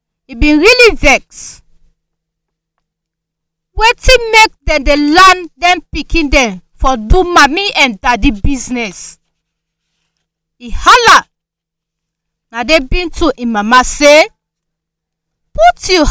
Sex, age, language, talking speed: female, 40-59, English, 110 wpm